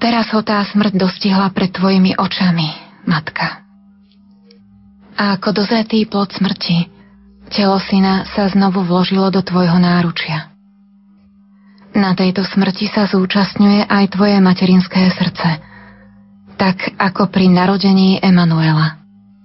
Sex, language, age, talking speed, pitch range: female, Slovak, 20-39, 110 wpm, 180-200 Hz